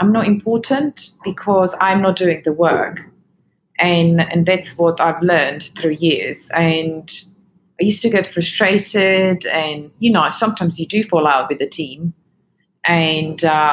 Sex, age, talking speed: female, 20-39, 155 wpm